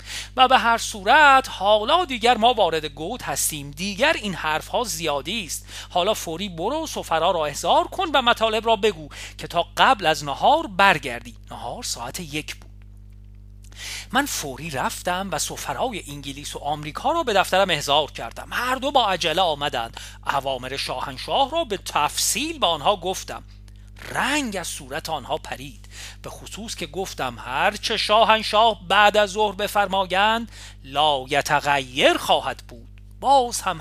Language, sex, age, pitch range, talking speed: Persian, male, 40-59, 130-215 Hz, 150 wpm